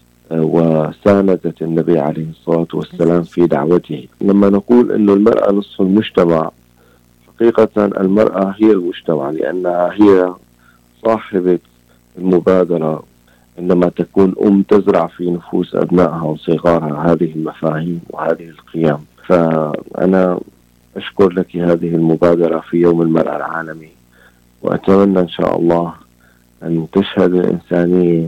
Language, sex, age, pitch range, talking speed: Arabic, male, 40-59, 80-90 Hz, 105 wpm